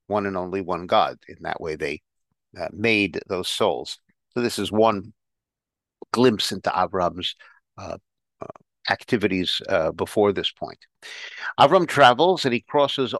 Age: 50-69